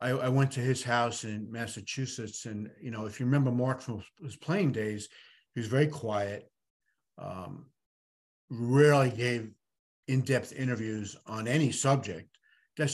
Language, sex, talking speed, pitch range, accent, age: English, male, 145 wpm, 105-130 Hz, American, 50-69